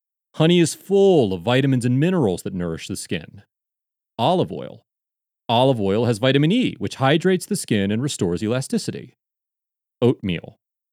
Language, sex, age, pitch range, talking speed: English, male, 30-49, 105-170 Hz, 145 wpm